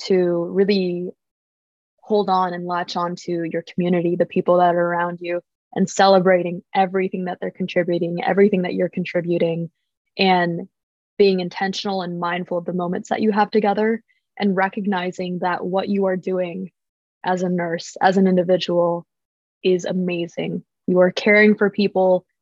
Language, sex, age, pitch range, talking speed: English, female, 20-39, 175-200 Hz, 155 wpm